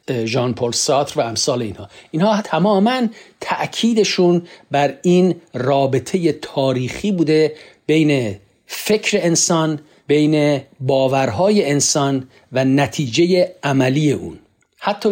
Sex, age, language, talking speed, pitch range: male, 50-69, Persian, 100 wpm, 130-175 Hz